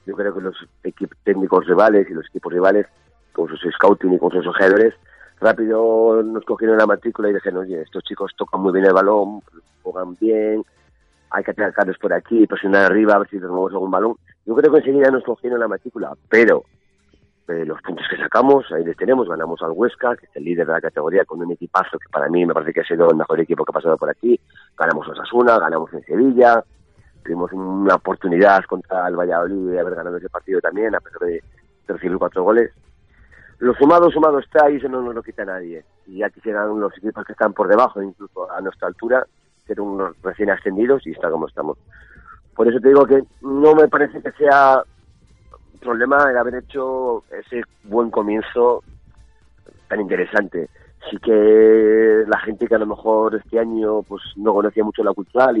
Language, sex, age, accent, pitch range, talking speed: Spanish, male, 40-59, Spanish, 95-135 Hz, 200 wpm